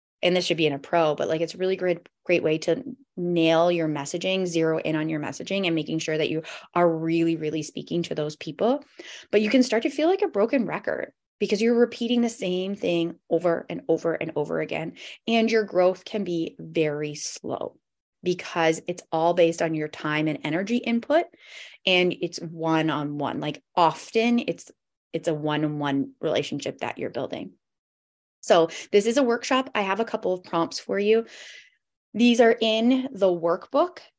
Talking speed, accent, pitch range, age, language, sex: 185 wpm, American, 160-220 Hz, 20-39, English, female